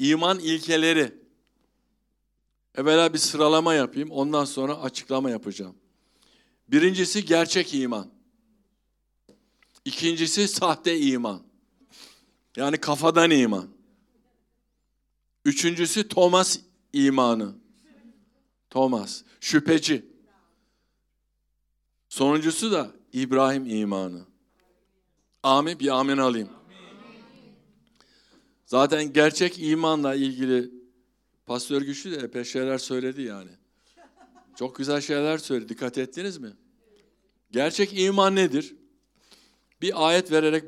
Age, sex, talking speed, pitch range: 60-79, male, 85 wpm, 130-185 Hz